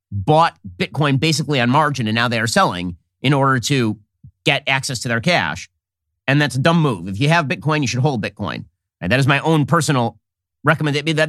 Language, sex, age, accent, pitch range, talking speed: English, male, 30-49, American, 110-155 Hz, 200 wpm